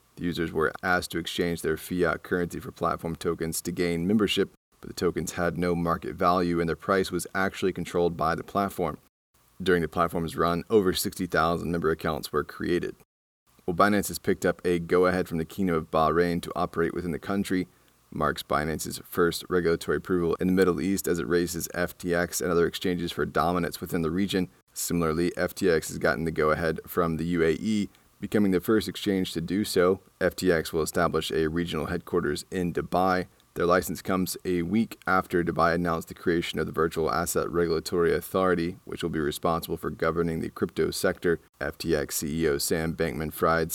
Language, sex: English, male